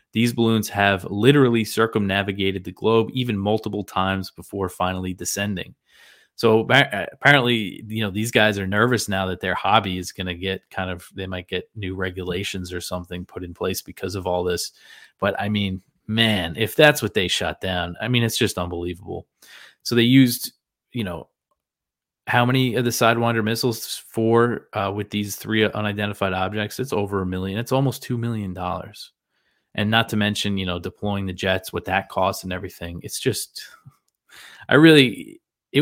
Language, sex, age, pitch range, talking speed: English, male, 20-39, 95-115 Hz, 175 wpm